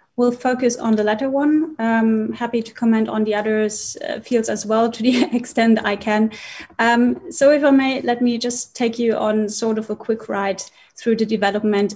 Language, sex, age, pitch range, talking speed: Slovak, female, 30-49, 210-245 Hz, 205 wpm